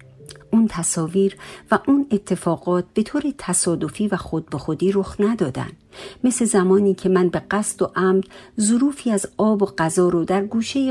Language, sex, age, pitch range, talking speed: Persian, female, 50-69, 155-210 Hz, 165 wpm